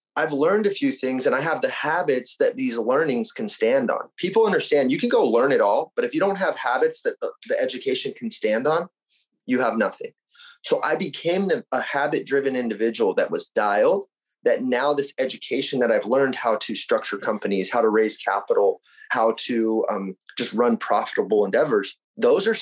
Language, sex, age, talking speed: English, male, 30-49, 190 wpm